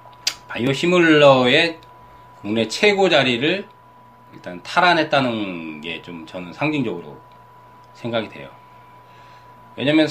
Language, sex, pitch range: Korean, male, 110-145 Hz